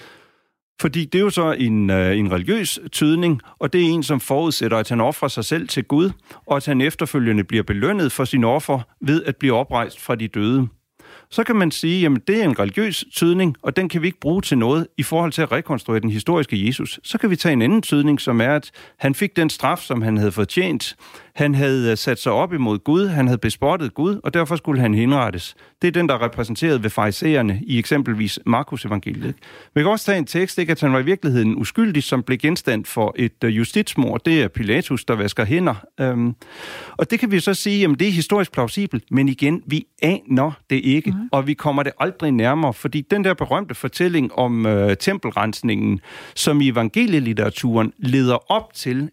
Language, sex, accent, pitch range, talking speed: Danish, male, native, 120-170 Hz, 210 wpm